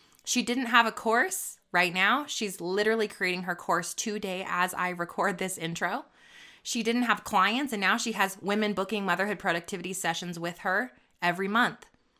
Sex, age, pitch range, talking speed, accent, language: female, 20-39, 180-235 Hz, 170 wpm, American, English